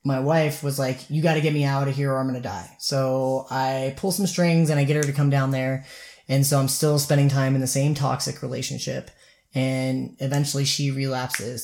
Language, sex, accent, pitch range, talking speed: English, male, American, 130-150 Hz, 230 wpm